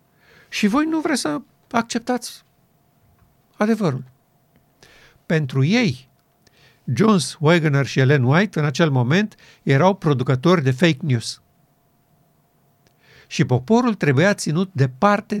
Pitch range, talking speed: 130-175 Hz, 105 wpm